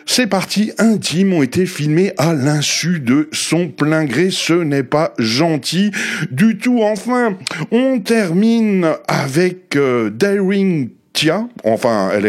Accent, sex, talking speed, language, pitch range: French, male, 125 wpm, French, 150-205 Hz